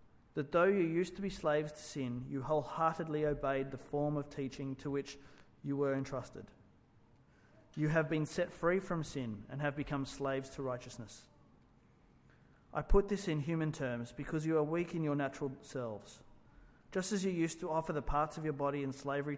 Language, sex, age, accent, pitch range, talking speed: English, male, 30-49, Australian, 130-155 Hz, 190 wpm